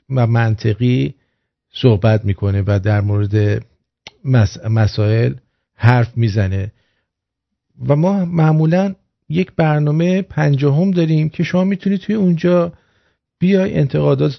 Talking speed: 110 wpm